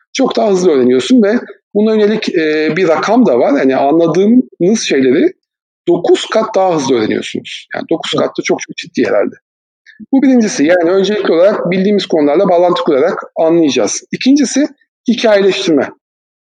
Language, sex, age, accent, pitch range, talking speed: Turkish, male, 50-69, native, 160-235 Hz, 140 wpm